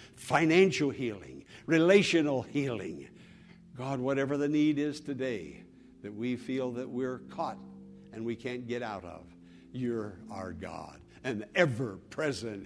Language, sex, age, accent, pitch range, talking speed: English, male, 60-79, American, 95-130 Hz, 130 wpm